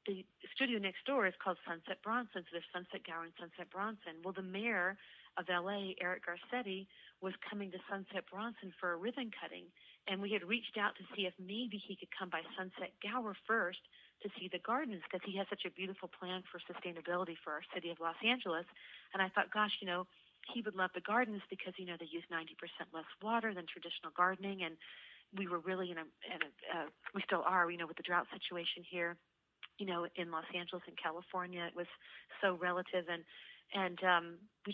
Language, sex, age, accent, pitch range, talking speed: English, female, 40-59, American, 175-200 Hz, 205 wpm